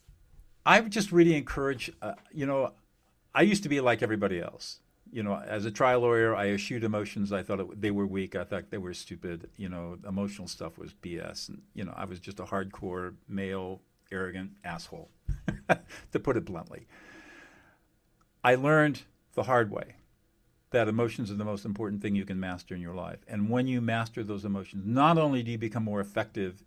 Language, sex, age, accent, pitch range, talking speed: English, male, 50-69, American, 95-125 Hz, 195 wpm